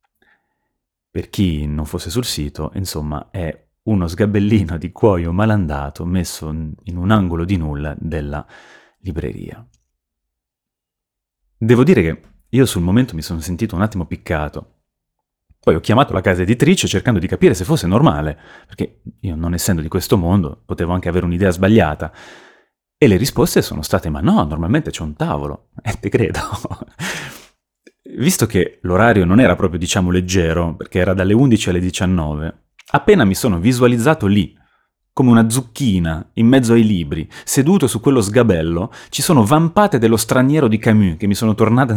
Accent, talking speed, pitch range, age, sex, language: native, 160 wpm, 80-110 Hz, 30-49, male, Italian